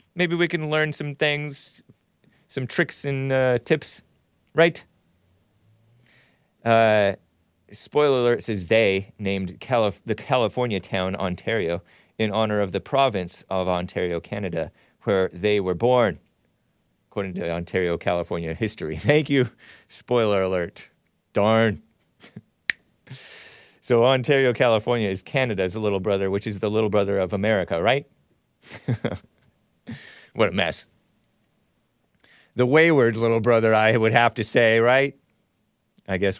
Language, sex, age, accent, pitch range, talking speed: English, male, 30-49, American, 95-145 Hz, 125 wpm